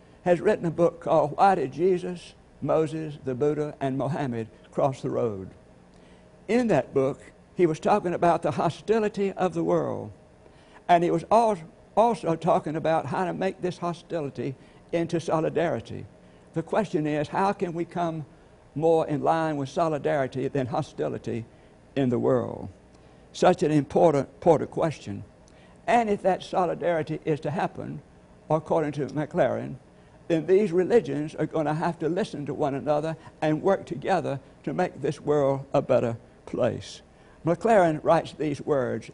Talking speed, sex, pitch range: 150 wpm, male, 140-175 Hz